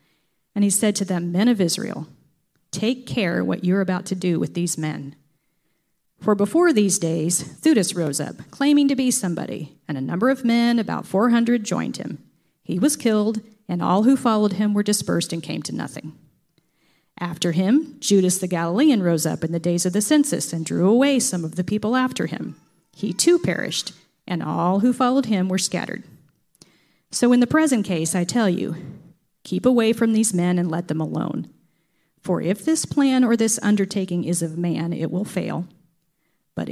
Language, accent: English, American